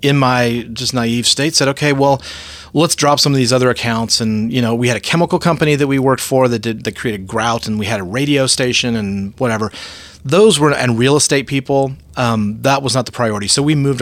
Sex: male